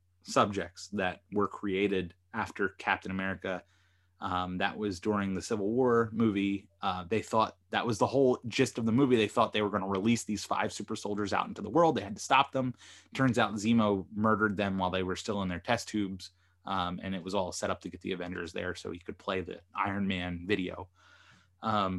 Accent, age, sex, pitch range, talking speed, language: American, 20-39, male, 95-115 Hz, 220 wpm, English